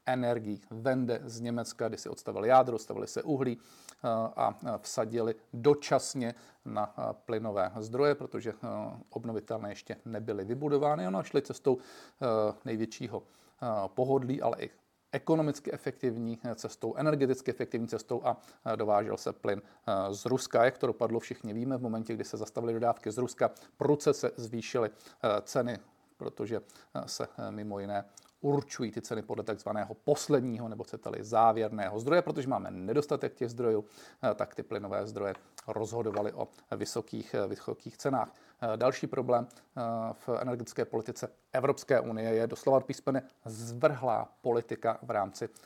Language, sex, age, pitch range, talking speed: Czech, male, 40-59, 115-145 Hz, 130 wpm